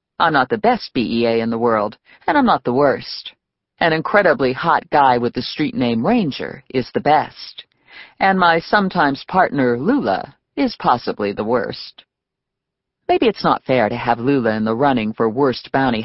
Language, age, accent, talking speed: English, 50-69, American, 175 wpm